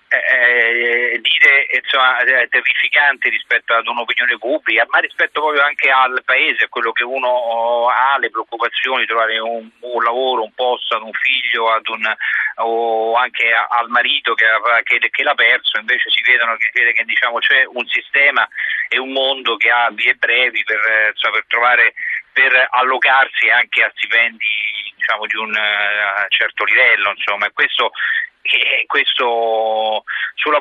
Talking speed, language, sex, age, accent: 135 wpm, Italian, male, 40-59, native